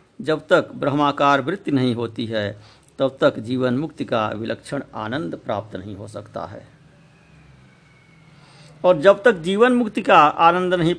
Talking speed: 145 wpm